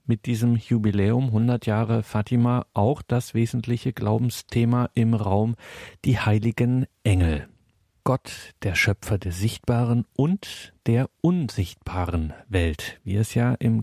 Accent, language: German, German